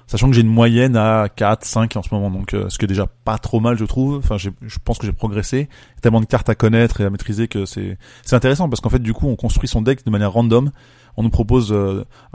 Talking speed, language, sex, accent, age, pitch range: 275 wpm, French, male, French, 20-39, 105-125 Hz